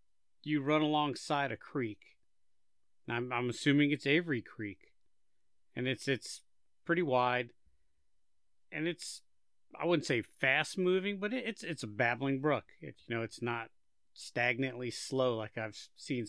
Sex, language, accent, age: male, English, American, 40-59